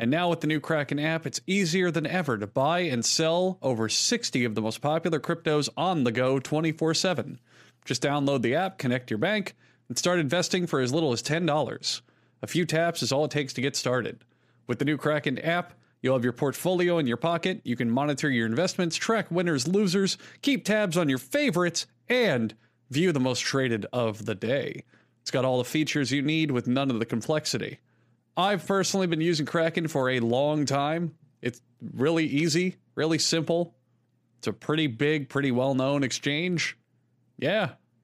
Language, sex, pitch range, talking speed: English, male, 125-165 Hz, 185 wpm